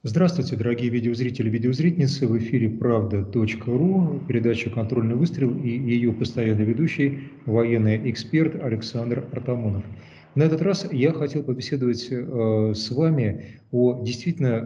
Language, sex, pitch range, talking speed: Russian, male, 115-140 Hz, 120 wpm